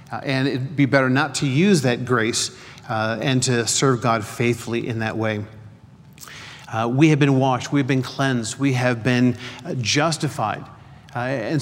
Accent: American